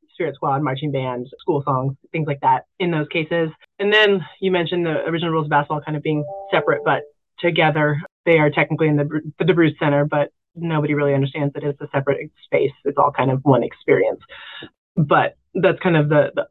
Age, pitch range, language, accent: 30-49, 150-175 Hz, English, American